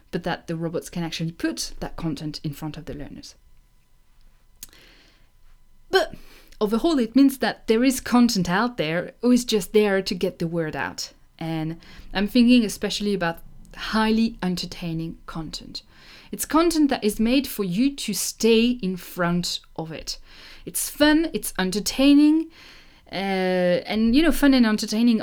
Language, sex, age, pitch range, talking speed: English, female, 30-49, 170-235 Hz, 155 wpm